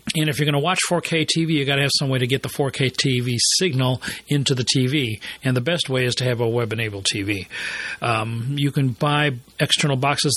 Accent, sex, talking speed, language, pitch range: American, male, 225 wpm, English, 125-155 Hz